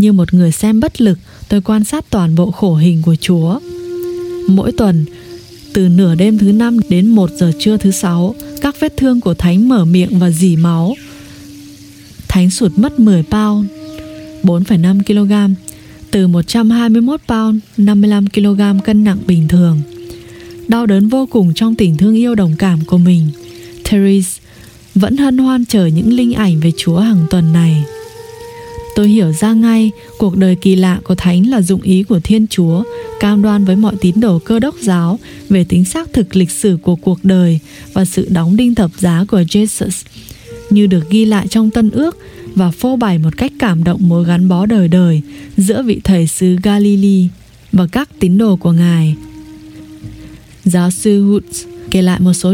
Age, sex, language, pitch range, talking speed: 20-39, female, English, 170-215 Hz, 180 wpm